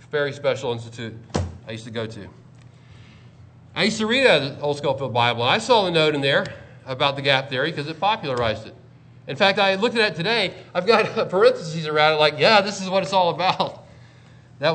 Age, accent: 40-59, American